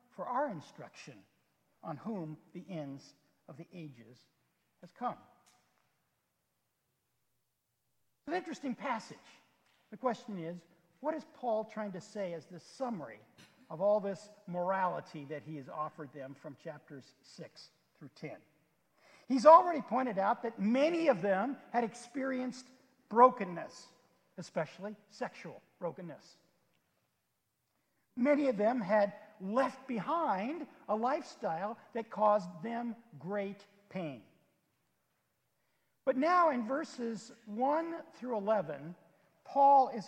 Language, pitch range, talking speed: English, 175-255 Hz, 115 wpm